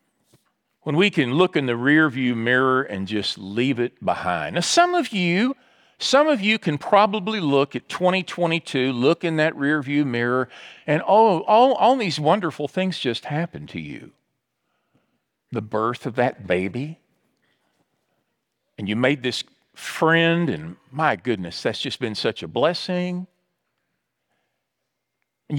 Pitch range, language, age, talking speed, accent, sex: 130-185 Hz, English, 50-69, 145 wpm, American, male